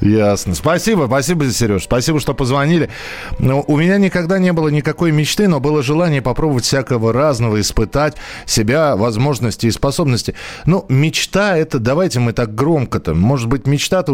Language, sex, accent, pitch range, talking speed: Russian, male, native, 100-145 Hz, 155 wpm